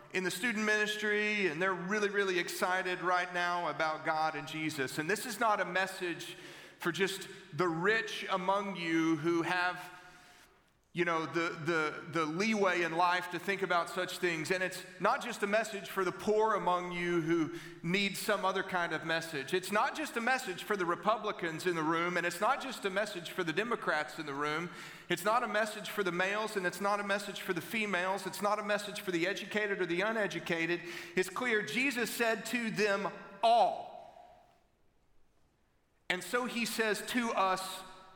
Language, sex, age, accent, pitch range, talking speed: English, male, 40-59, American, 175-215 Hz, 190 wpm